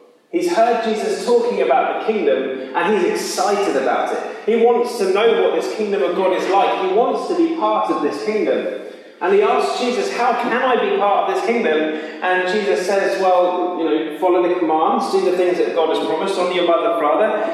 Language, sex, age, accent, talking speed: English, male, 30-49, British, 215 wpm